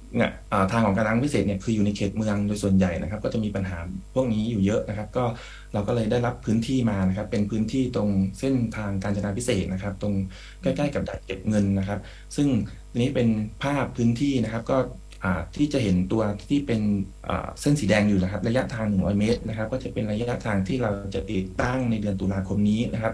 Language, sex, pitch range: English, male, 95-120 Hz